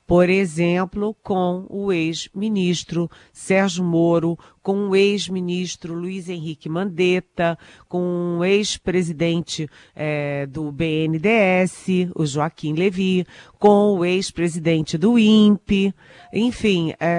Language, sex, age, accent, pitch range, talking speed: Portuguese, female, 40-59, Brazilian, 155-205 Hz, 95 wpm